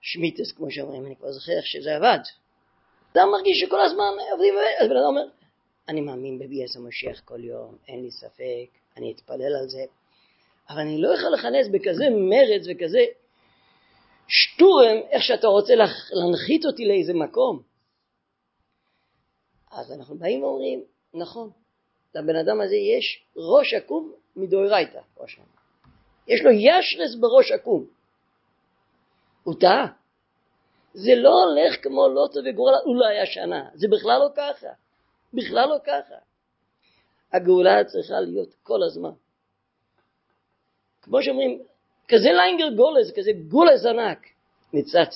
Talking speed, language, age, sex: 125 wpm, Hebrew, 40-59, female